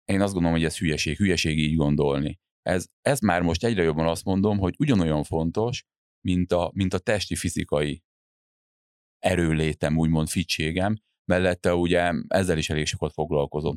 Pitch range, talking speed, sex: 80-95 Hz, 155 wpm, male